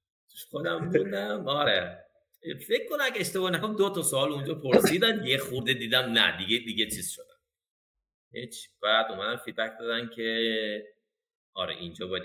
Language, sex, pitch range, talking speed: Persian, male, 115-180 Hz, 145 wpm